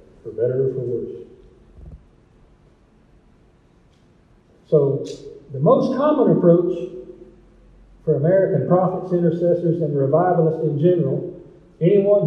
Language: English